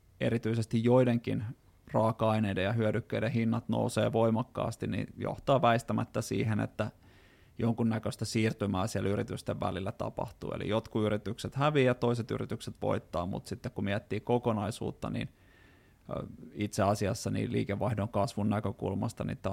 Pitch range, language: 100-120 Hz, Finnish